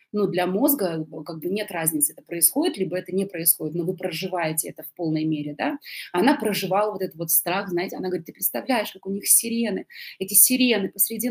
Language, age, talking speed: Russian, 20-39, 205 wpm